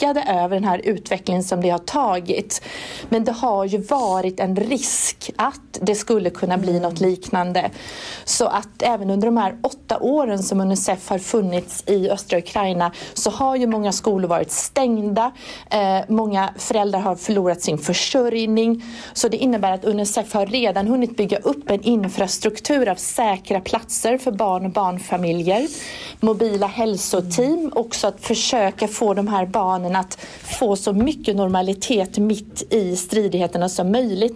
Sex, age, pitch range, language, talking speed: female, 40-59, 190-230 Hz, Swedish, 155 wpm